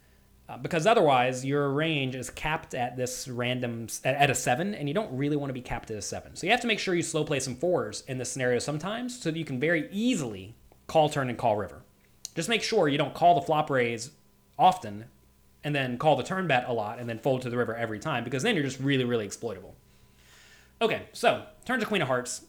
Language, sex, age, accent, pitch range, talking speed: English, male, 30-49, American, 100-150 Hz, 235 wpm